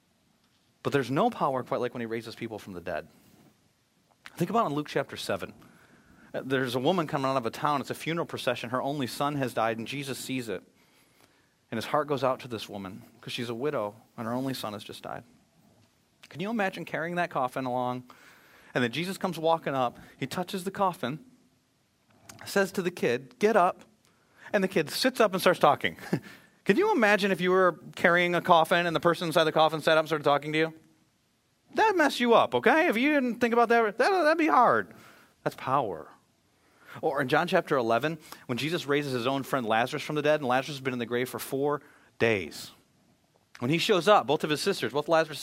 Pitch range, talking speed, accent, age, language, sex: 130-185 Hz, 215 wpm, American, 30-49, English, male